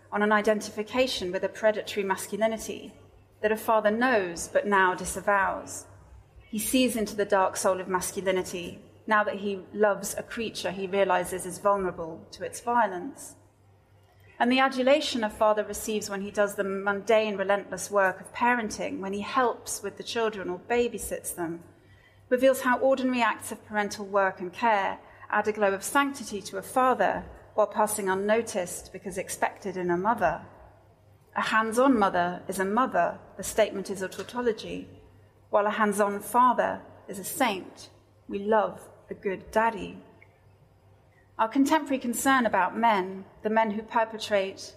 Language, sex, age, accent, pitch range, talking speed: English, female, 30-49, British, 190-220 Hz, 155 wpm